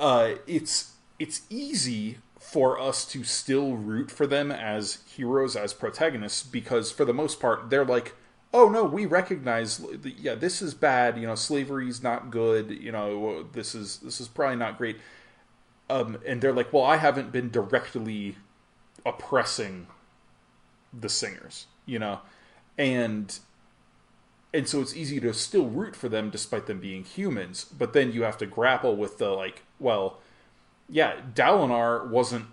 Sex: male